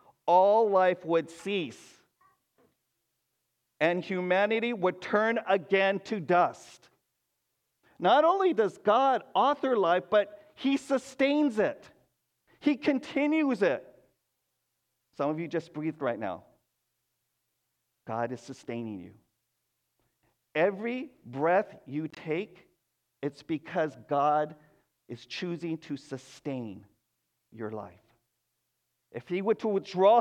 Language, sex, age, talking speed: English, male, 50-69, 105 wpm